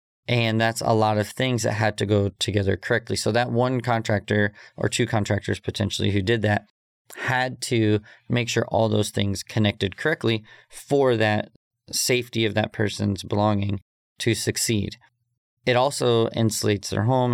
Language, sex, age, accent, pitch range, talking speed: English, male, 30-49, American, 105-120 Hz, 160 wpm